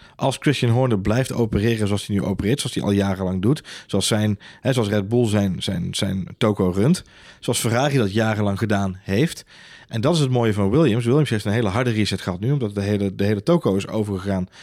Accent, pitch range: Dutch, 105-135 Hz